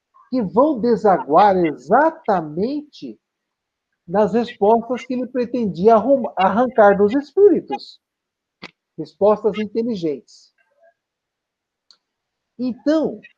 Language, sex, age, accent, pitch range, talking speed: Portuguese, male, 60-79, Brazilian, 185-250 Hz, 65 wpm